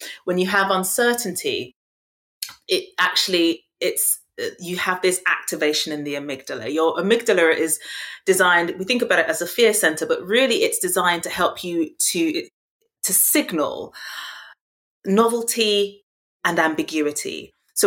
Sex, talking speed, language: female, 135 wpm, English